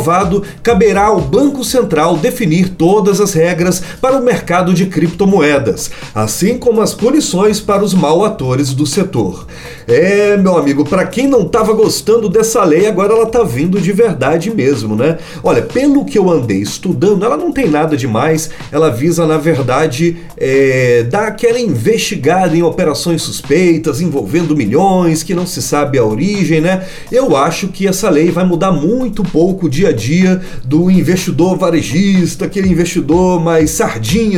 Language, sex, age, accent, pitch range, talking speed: Portuguese, male, 40-59, Brazilian, 155-215 Hz, 155 wpm